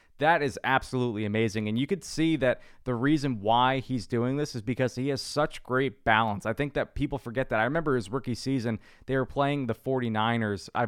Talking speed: 215 wpm